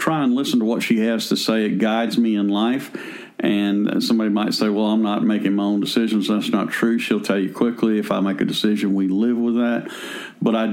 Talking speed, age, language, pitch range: 240 wpm, 50-69, English, 100-115 Hz